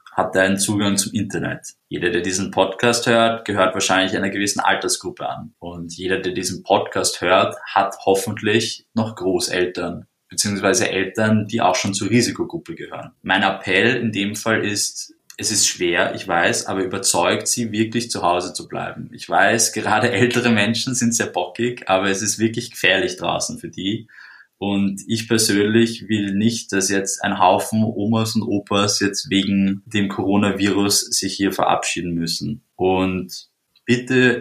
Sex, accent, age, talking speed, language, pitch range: male, German, 20-39, 160 wpm, German, 95-115 Hz